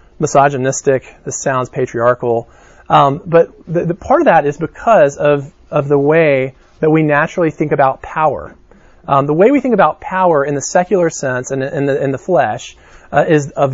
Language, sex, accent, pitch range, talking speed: English, male, American, 135-170 Hz, 190 wpm